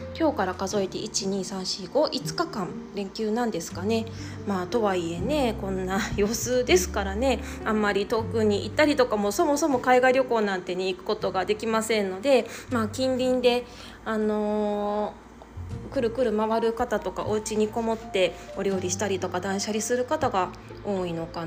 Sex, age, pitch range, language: female, 20-39, 190-250 Hz, Japanese